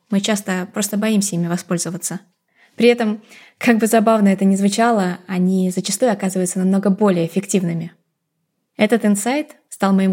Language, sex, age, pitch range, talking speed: Russian, female, 20-39, 180-210 Hz, 140 wpm